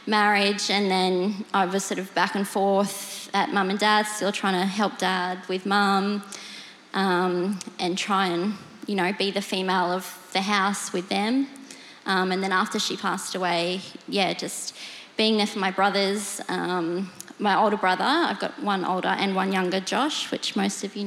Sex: female